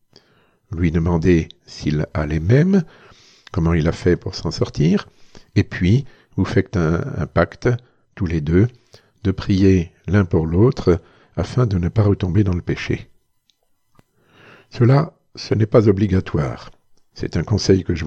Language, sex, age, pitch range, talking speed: French, male, 50-69, 95-120 Hz, 150 wpm